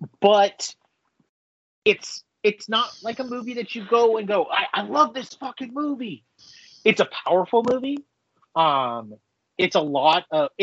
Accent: American